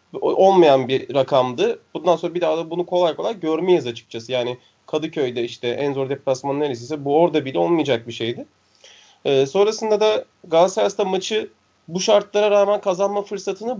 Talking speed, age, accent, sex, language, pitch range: 155 wpm, 30-49, native, male, Turkish, 145-200 Hz